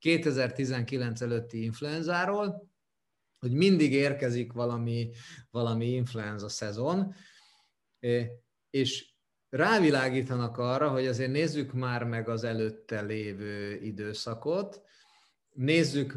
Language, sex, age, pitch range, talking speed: Hungarian, male, 30-49, 125-160 Hz, 85 wpm